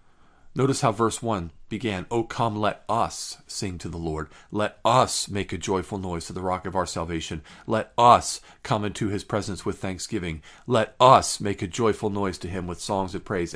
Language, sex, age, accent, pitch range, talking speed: English, male, 40-59, American, 95-115 Hz, 200 wpm